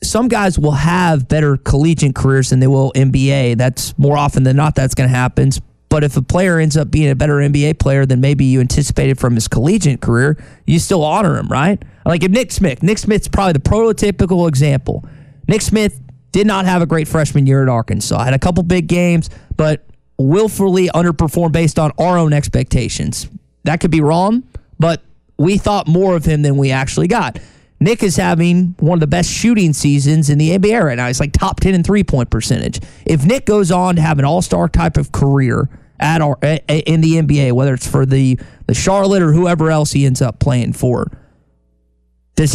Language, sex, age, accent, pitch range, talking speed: English, male, 20-39, American, 135-185 Hz, 205 wpm